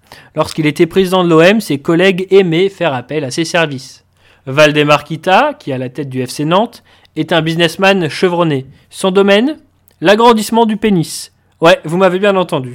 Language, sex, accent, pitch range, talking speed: French, male, French, 140-190 Hz, 170 wpm